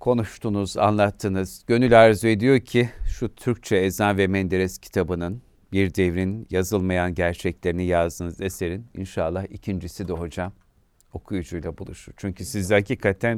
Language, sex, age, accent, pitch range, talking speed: Turkish, male, 50-69, native, 90-100 Hz, 120 wpm